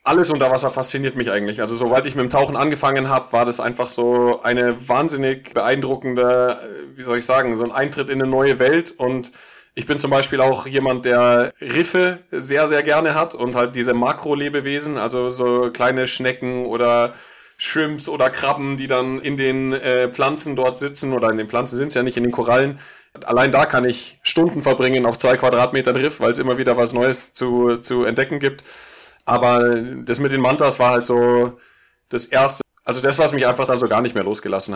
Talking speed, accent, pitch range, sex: 200 wpm, German, 125-140 Hz, male